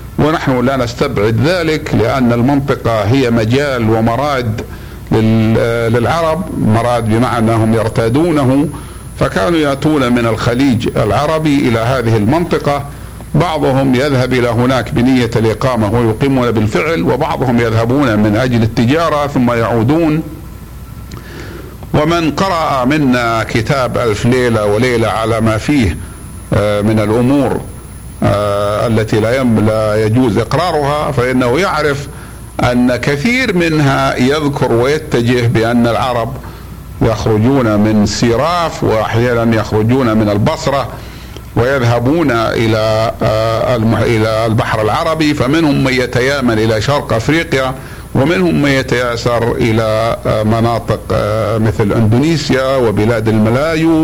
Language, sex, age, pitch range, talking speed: Arabic, male, 60-79, 110-135 Hz, 100 wpm